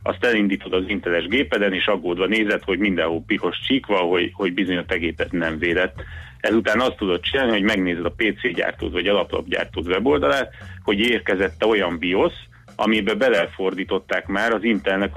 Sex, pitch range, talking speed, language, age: male, 90-105 Hz, 160 wpm, Hungarian, 30-49